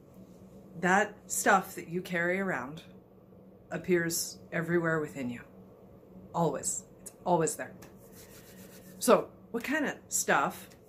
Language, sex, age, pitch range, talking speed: English, female, 40-59, 155-190 Hz, 105 wpm